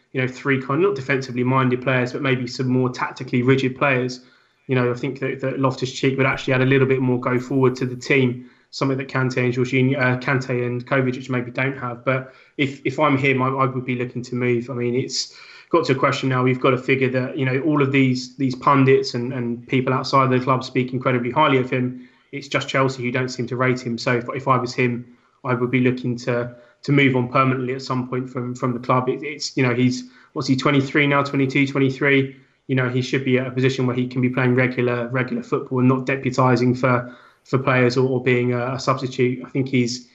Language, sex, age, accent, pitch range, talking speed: English, male, 20-39, British, 125-135 Hz, 245 wpm